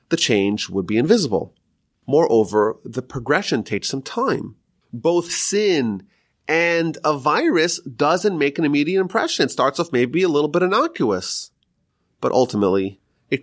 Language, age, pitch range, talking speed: English, 30-49, 105-150 Hz, 145 wpm